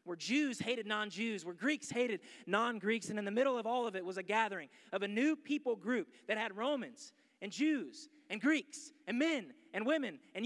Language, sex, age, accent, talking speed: English, male, 20-39, American, 205 wpm